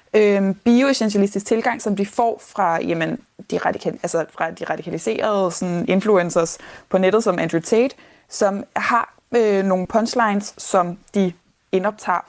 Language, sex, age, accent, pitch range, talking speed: Danish, female, 20-39, native, 185-230 Hz, 135 wpm